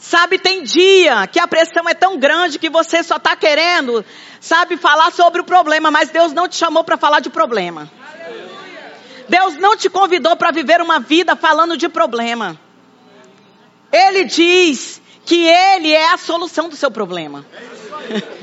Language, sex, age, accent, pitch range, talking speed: Portuguese, female, 40-59, Brazilian, 300-365 Hz, 160 wpm